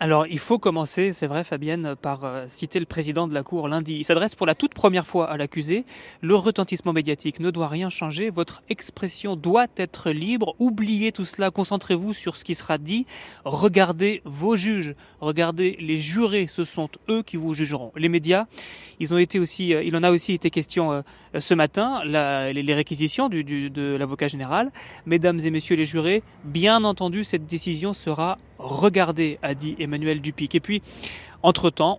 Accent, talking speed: French, 170 wpm